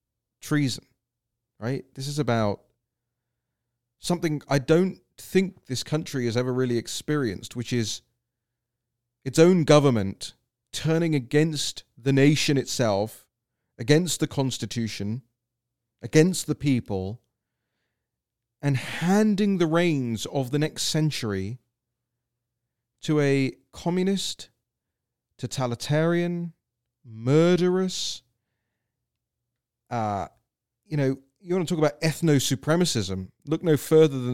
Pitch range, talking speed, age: 115-155 Hz, 100 wpm, 30-49